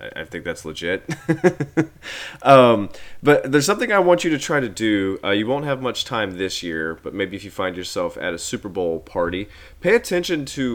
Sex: male